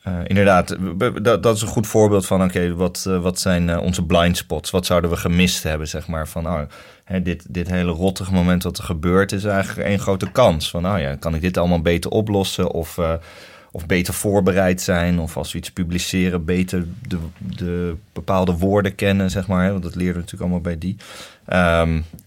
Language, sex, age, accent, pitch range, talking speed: Dutch, male, 30-49, Dutch, 85-100 Hz, 220 wpm